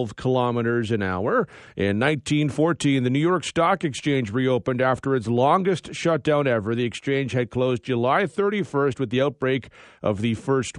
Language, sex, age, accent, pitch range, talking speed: English, male, 40-59, American, 125-155 Hz, 155 wpm